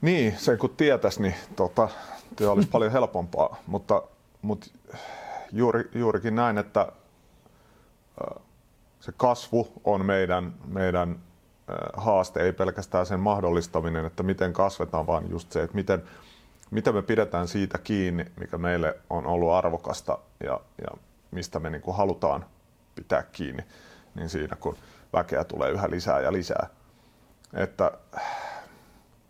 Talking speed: 130 wpm